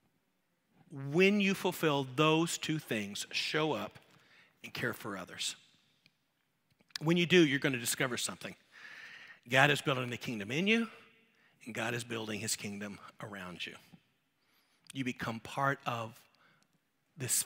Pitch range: 115-155 Hz